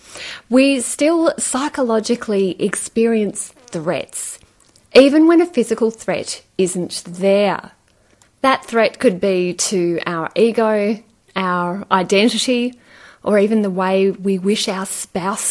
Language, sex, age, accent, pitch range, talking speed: English, female, 30-49, Australian, 180-235 Hz, 110 wpm